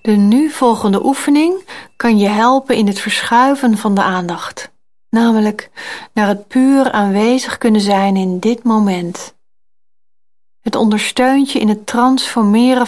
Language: Dutch